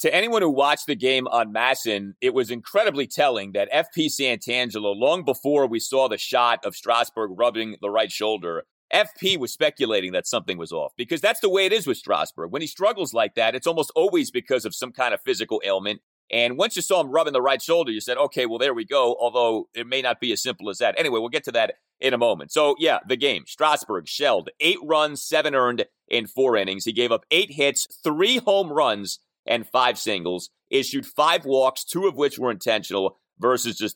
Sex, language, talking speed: male, English, 220 wpm